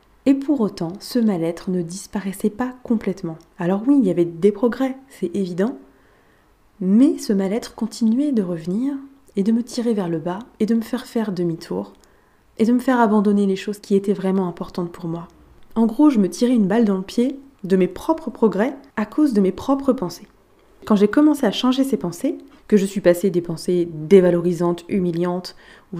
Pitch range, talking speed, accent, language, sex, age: 180-240 Hz, 200 wpm, French, French, female, 20-39